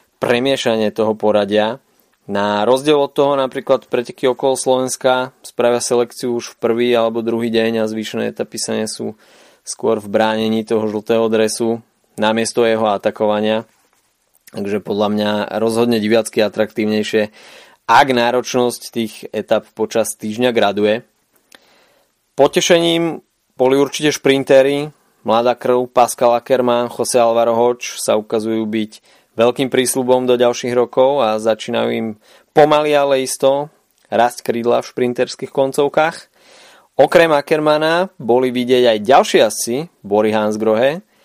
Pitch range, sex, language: 110-130 Hz, male, Slovak